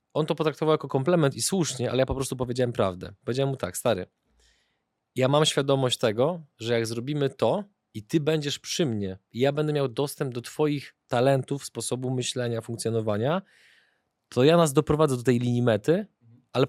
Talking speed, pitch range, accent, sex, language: 180 wpm, 115-145 Hz, native, male, Polish